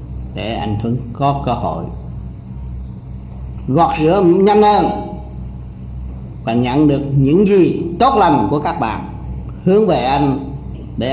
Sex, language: male, Vietnamese